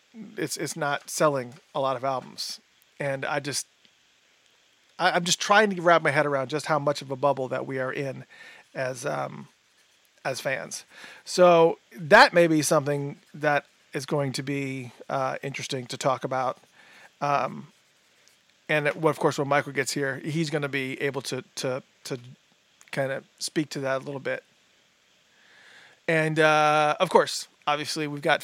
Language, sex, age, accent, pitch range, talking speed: English, male, 40-59, American, 140-165 Hz, 165 wpm